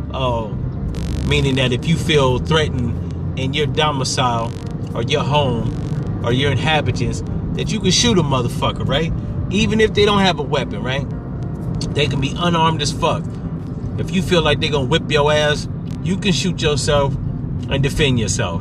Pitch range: 120-150 Hz